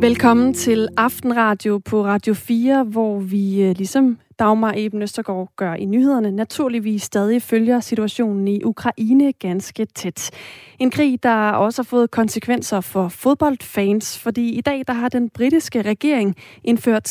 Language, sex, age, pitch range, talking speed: Danish, female, 30-49, 205-245 Hz, 140 wpm